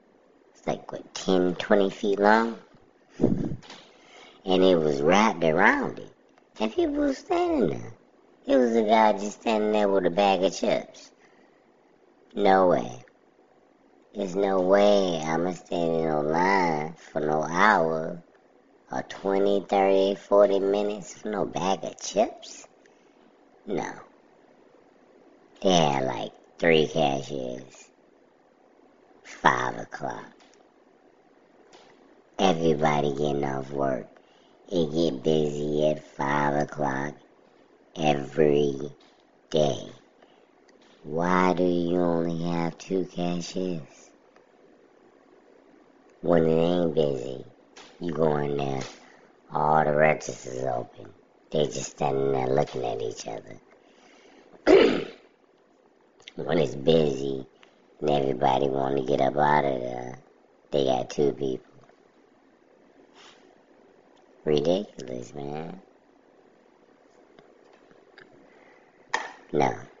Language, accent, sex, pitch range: English, American, male, 75-95 Hz